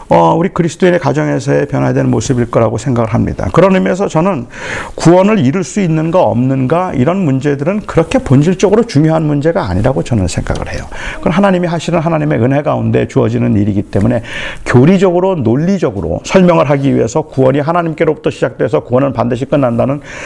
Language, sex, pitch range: Korean, male, 115-160 Hz